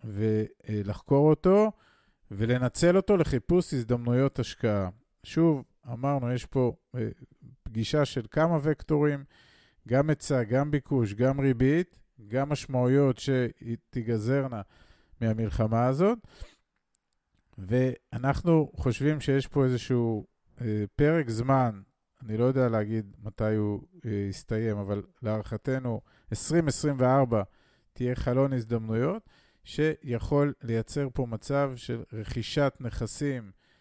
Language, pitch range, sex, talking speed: Hebrew, 110-140 Hz, male, 95 wpm